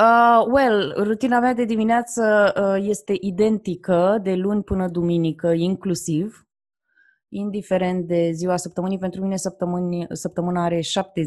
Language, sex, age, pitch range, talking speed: Romanian, female, 20-39, 155-200 Hz, 130 wpm